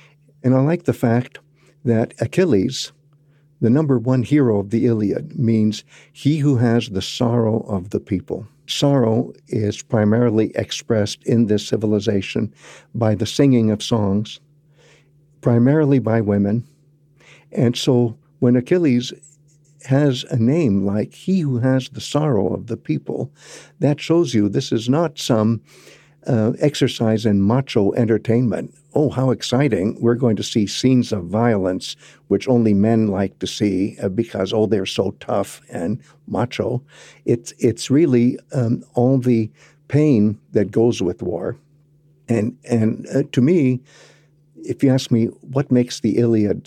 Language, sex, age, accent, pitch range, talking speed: English, male, 60-79, American, 110-145 Hz, 145 wpm